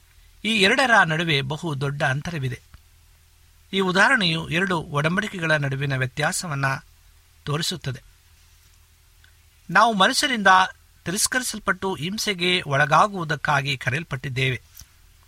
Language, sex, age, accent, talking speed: Kannada, male, 50-69, native, 75 wpm